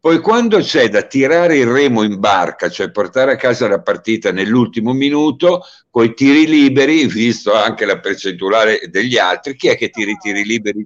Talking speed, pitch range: 190 wpm, 105-135 Hz